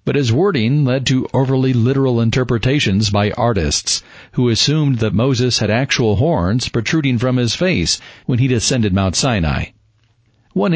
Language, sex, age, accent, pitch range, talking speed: English, male, 50-69, American, 110-135 Hz, 150 wpm